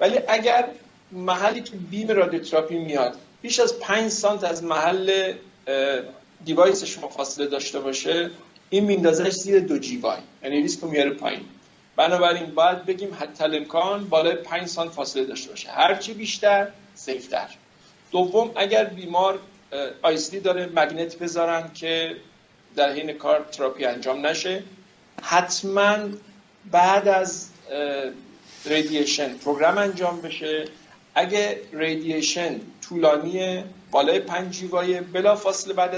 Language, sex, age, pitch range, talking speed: Persian, male, 50-69, 160-205 Hz, 120 wpm